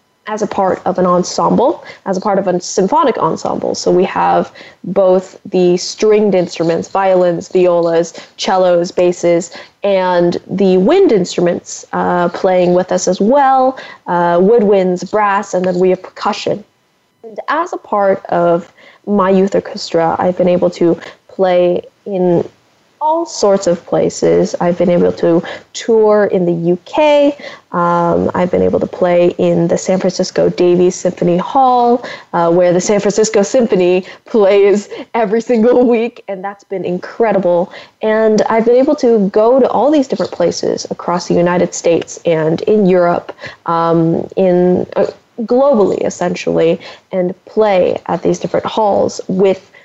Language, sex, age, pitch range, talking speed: English, female, 10-29, 180-215 Hz, 150 wpm